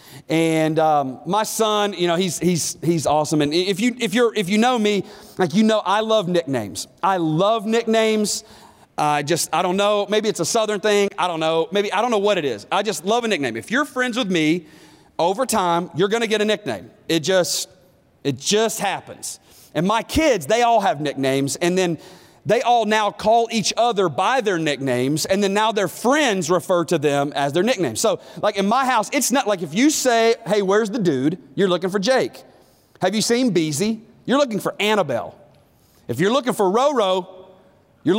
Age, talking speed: 40-59, 210 wpm